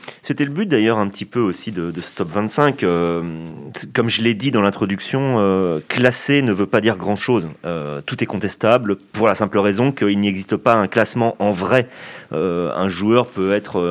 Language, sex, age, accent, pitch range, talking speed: French, male, 30-49, French, 110-145 Hz, 205 wpm